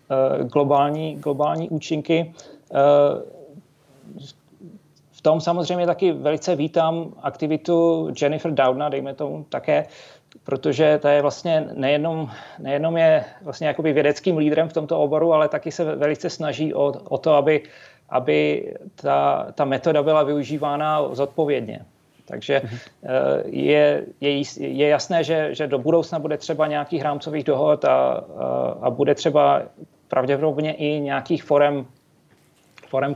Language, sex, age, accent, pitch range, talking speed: Czech, male, 30-49, native, 140-160 Hz, 120 wpm